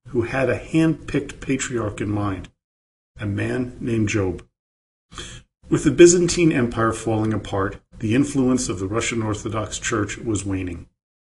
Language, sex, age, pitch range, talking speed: English, male, 40-59, 100-130 Hz, 140 wpm